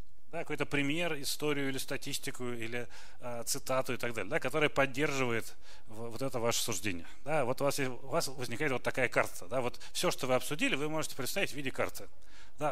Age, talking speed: 30-49, 205 wpm